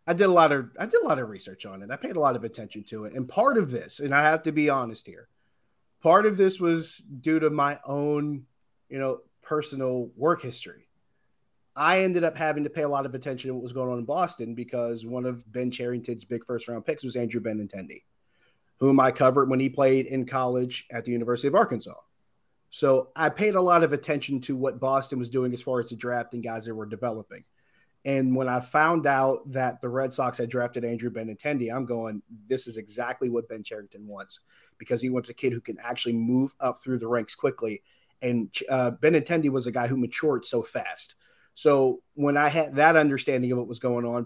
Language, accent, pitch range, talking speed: English, American, 120-145 Hz, 225 wpm